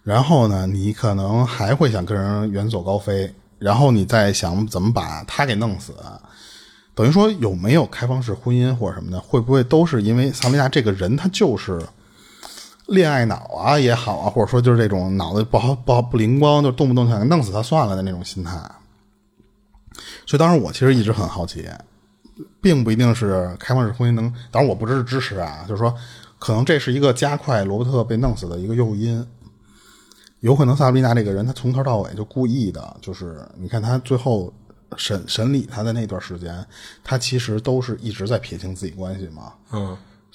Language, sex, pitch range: Chinese, male, 100-130 Hz